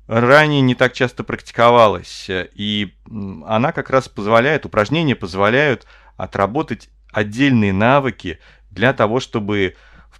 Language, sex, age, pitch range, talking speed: Russian, male, 30-49, 110-135 Hz, 110 wpm